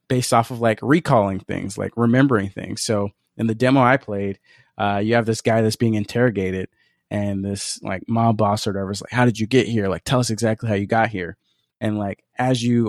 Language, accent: English, American